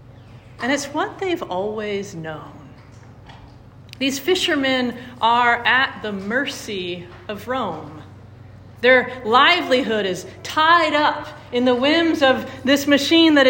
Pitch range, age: 180-295 Hz, 40-59